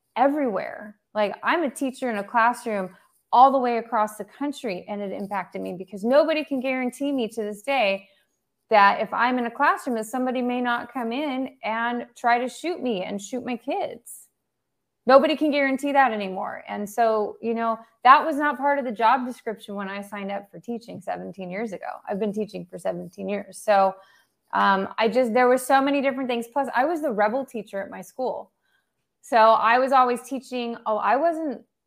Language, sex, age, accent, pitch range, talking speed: English, female, 20-39, American, 205-255 Hz, 200 wpm